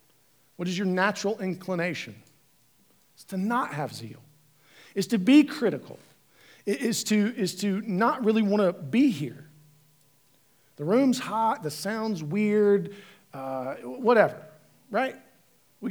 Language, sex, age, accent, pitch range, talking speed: English, male, 50-69, American, 160-220 Hz, 130 wpm